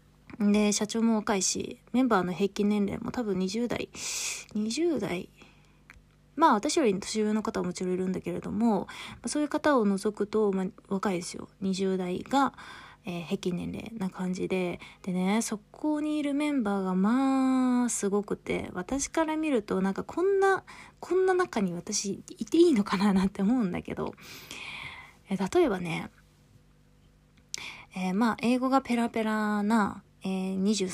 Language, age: Japanese, 20-39